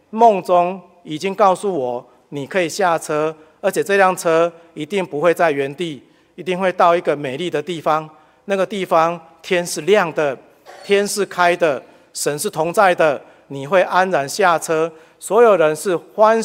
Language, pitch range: Chinese, 140-180 Hz